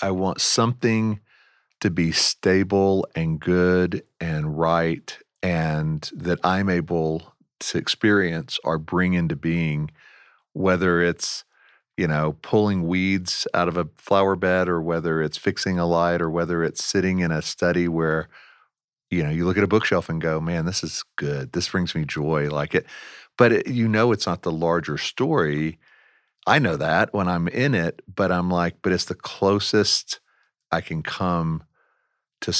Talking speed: 165 wpm